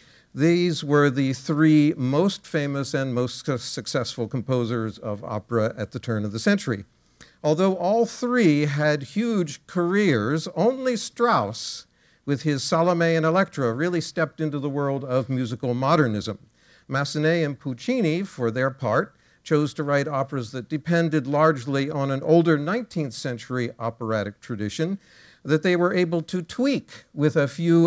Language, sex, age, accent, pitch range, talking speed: English, male, 50-69, American, 130-165 Hz, 145 wpm